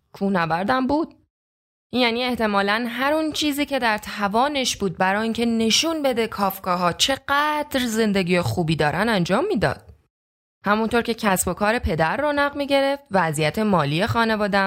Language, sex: Persian, female